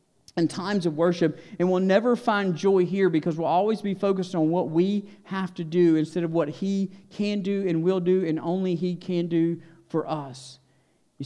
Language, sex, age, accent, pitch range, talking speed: English, male, 50-69, American, 160-195 Hz, 205 wpm